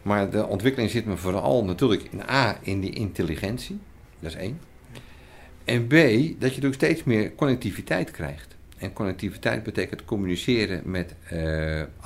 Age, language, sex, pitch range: 50-69, Dutch, male, 85-115 Hz